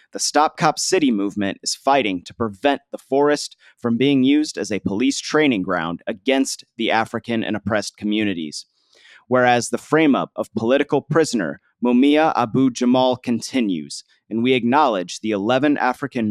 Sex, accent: male, American